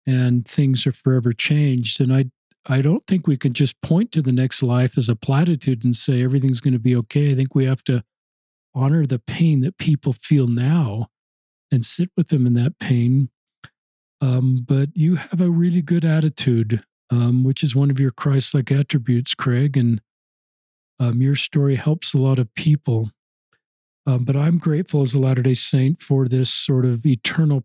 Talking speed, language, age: 190 wpm, English, 50-69